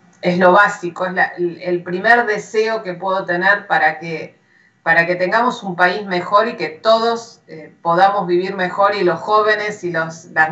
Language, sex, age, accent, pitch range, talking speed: Spanish, female, 40-59, Argentinian, 175-225 Hz, 165 wpm